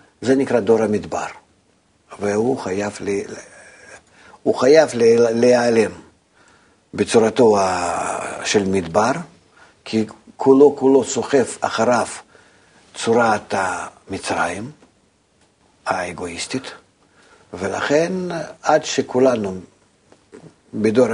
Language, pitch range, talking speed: Hebrew, 105-140 Hz, 60 wpm